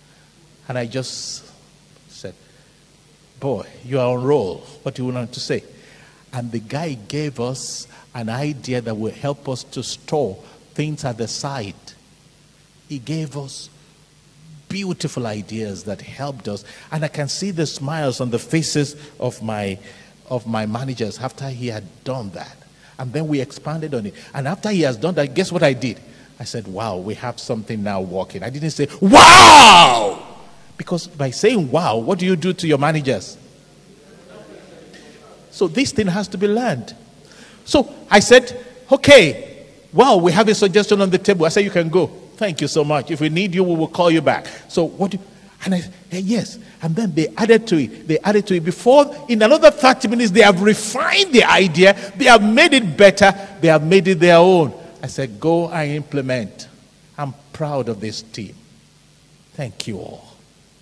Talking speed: 185 wpm